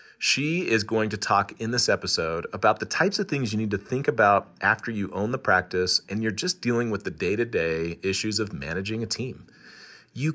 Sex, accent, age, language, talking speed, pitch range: male, American, 30-49, English, 210 wpm, 95-125 Hz